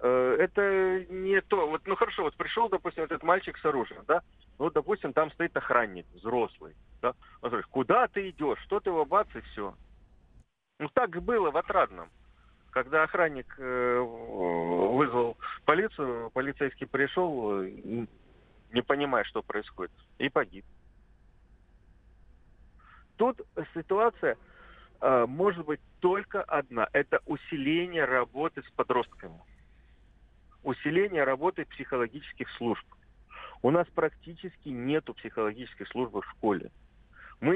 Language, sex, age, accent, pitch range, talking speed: Russian, male, 40-59, native, 115-185 Hz, 115 wpm